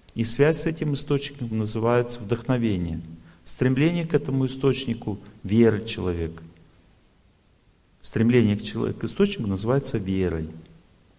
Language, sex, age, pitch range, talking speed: Russian, male, 40-59, 95-135 Hz, 105 wpm